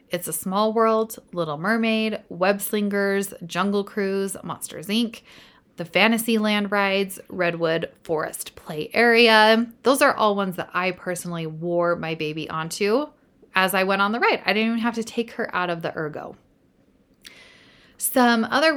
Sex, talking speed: female, 155 wpm